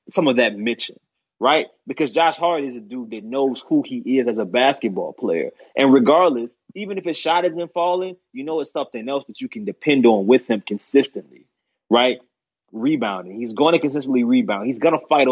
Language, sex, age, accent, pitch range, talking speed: English, male, 20-39, American, 120-160 Hz, 205 wpm